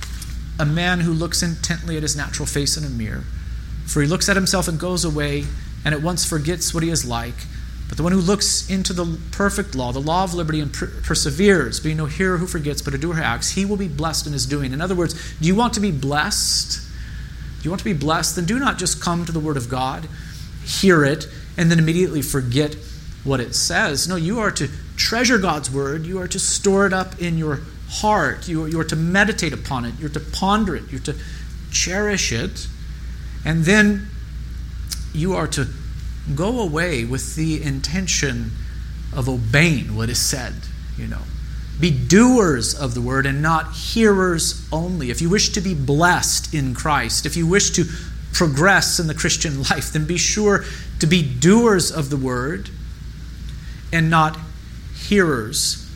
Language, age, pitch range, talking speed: English, 40-59, 125-180 Hz, 195 wpm